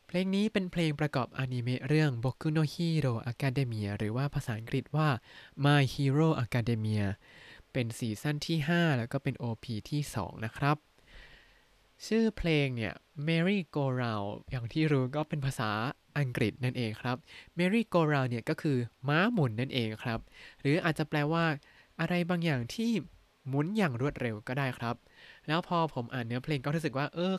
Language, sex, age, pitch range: Thai, male, 20-39, 120-165 Hz